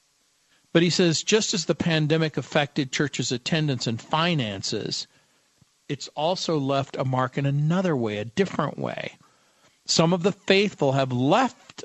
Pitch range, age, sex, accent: 130-165 Hz, 50-69, male, American